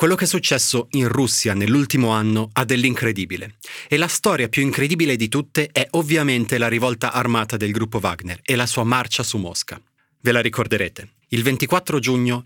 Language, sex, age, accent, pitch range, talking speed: Italian, male, 30-49, native, 110-140 Hz, 180 wpm